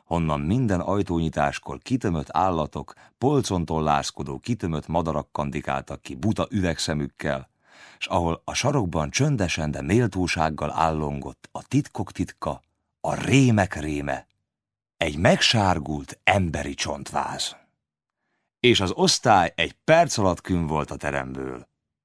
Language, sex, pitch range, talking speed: Hungarian, male, 75-105 Hz, 110 wpm